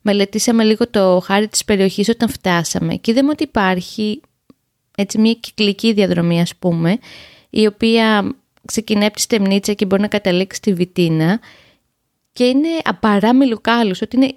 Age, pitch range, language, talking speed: 20-39, 185-235 Hz, Greek, 145 wpm